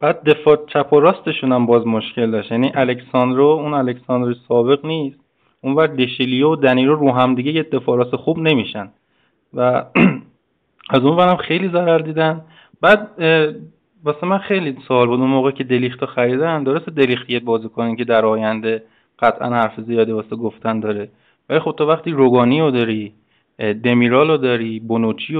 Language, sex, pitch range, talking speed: Persian, male, 115-150 Hz, 155 wpm